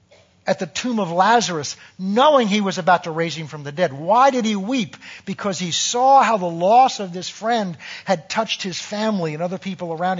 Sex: male